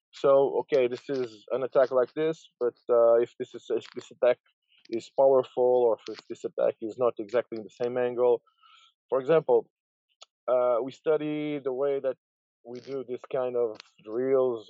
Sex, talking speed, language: male, 175 wpm, English